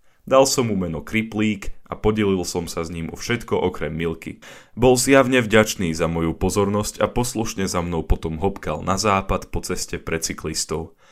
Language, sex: Slovak, male